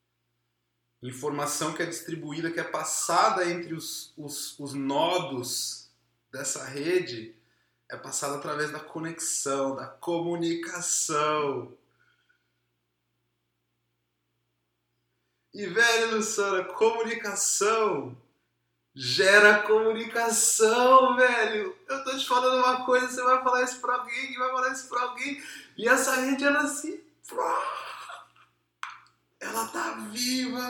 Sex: male